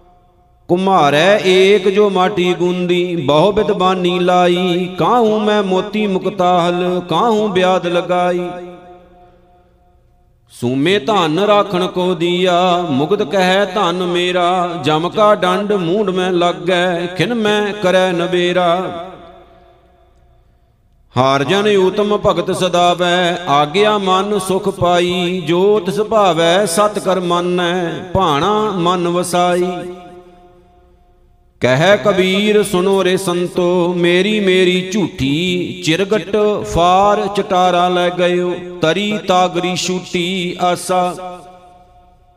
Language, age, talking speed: Punjabi, 50-69, 100 wpm